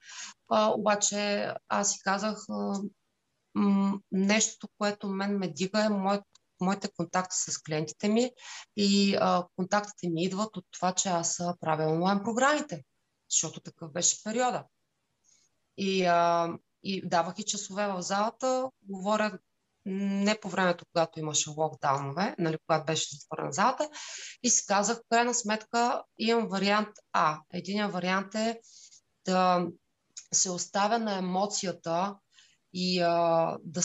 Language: Bulgarian